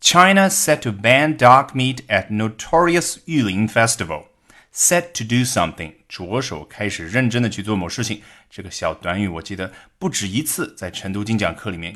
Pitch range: 105-155 Hz